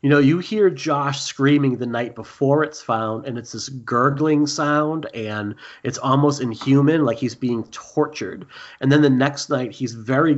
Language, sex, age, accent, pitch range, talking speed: English, male, 30-49, American, 115-140 Hz, 180 wpm